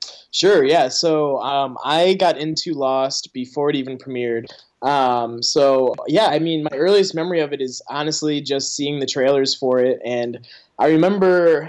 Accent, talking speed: American, 170 wpm